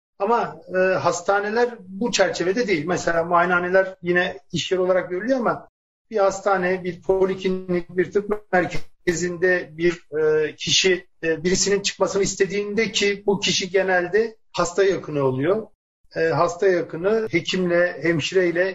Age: 50-69